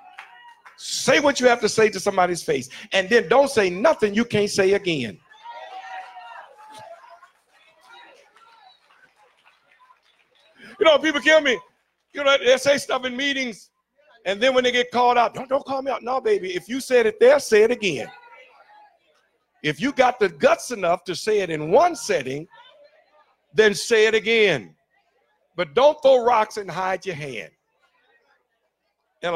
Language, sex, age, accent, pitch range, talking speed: English, male, 50-69, American, 170-270 Hz, 155 wpm